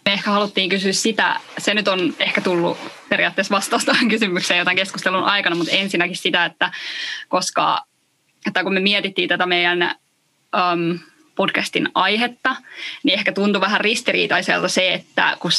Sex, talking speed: female, 140 wpm